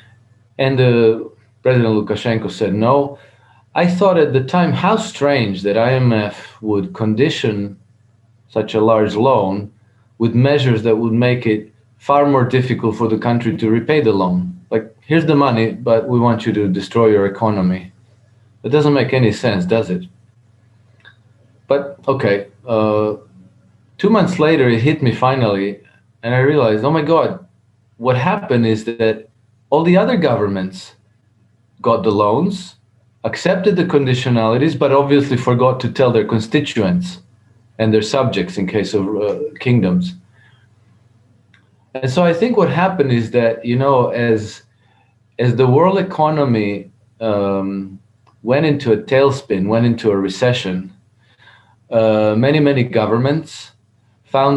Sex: male